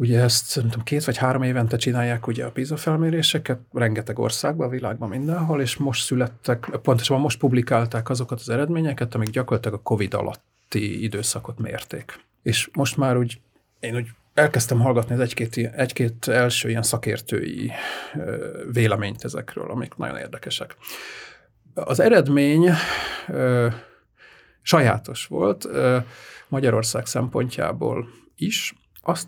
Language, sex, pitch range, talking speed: Hungarian, male, 115-130 Hz, 115 wpm